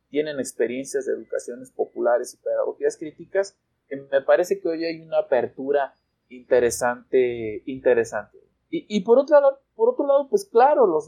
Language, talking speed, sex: Spanish, 145 wpm, male